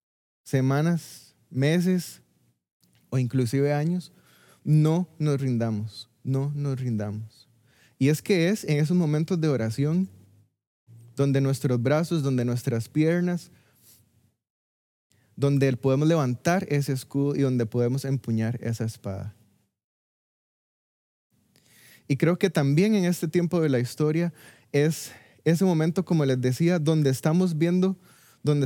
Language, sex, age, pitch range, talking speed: Spanish, male, 20-39, 120-165 Hz, 120 wpm